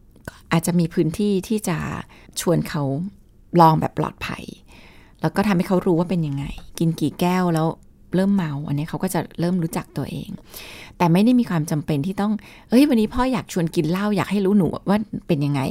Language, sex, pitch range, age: Thai, female, 155-205 Hz, 20-39